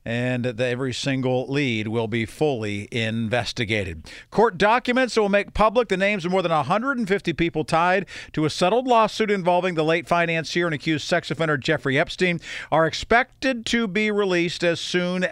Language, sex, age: English, male, 50-69